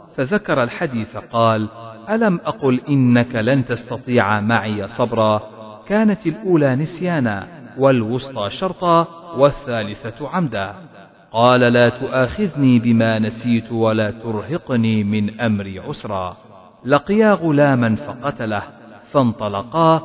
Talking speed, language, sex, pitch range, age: 95 wpm, Arabic, male, 110-155 Hz, 50-69